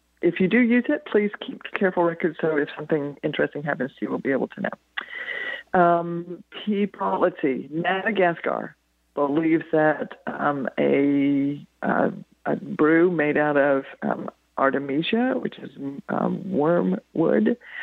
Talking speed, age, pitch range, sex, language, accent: 140 wpm, 50-69, 140-175 Hz, female, English, American